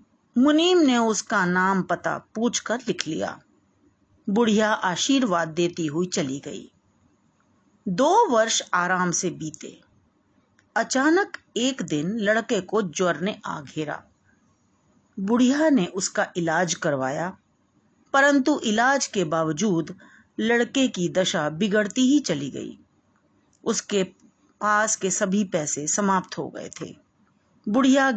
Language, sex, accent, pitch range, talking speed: Hindi, female, native, 180-245 Hz, 115 wpm